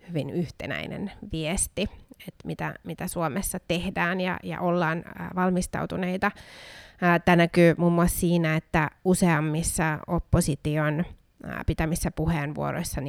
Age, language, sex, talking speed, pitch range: 30-49, Finnish, female, 100 wpm, 160-190 Hz